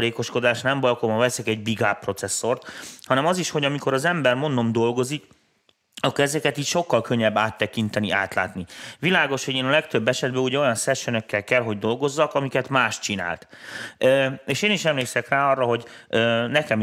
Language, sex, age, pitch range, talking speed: Hungarian, male, 30-49, 105-135 Hz, 170 wpm